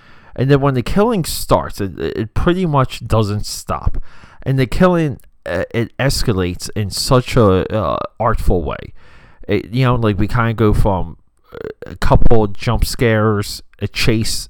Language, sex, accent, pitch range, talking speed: English, male, American, 95-125 Hz, 160 wpm